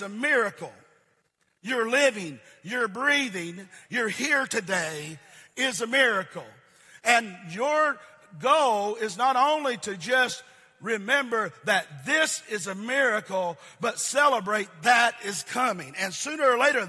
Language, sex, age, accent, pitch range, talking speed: English, male, 50-69, American, 175-240 Hz, 125 wpm